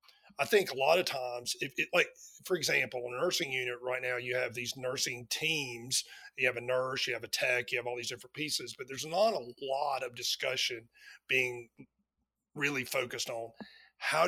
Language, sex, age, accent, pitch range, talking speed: English, male, 40-59, American, 120-150 Hz, 200 wpm